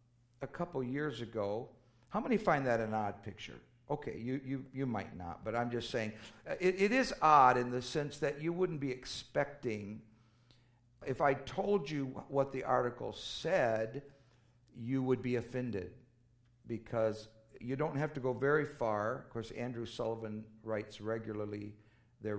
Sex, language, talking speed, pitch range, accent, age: male, English, 160 wpm, 115-140 Hz, American, 50-69